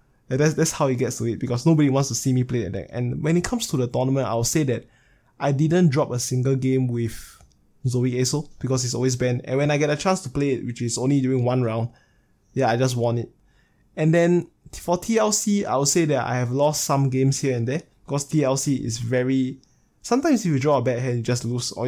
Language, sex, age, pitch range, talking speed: English, male, 20-39, 125-155 Hz, 245 wpm